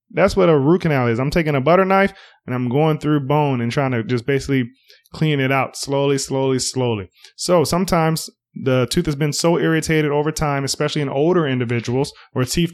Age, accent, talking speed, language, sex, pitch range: 20-39, American, 205 wpm, English, male, 130-160 Hz